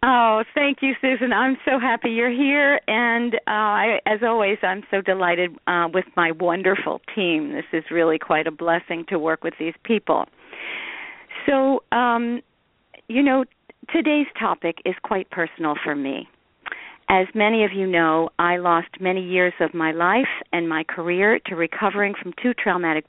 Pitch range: 175-240 Hz